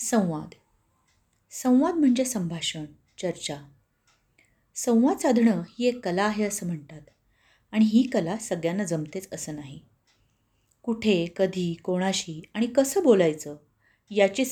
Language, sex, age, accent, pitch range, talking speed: Marathi, female, 30-49, native, 155-245 Hz, 110 wpm